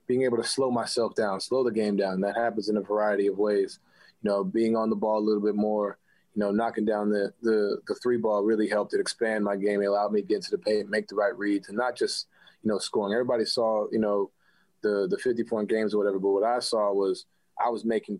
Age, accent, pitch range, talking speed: 20-39, American, 100-115 Hz, 260 wpm